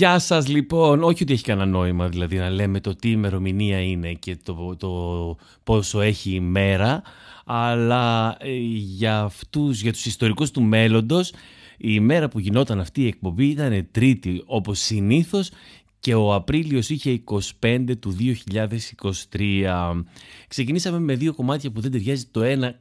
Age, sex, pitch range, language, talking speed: 30-49, male, 100-145 Hz, Greek, 150 wpm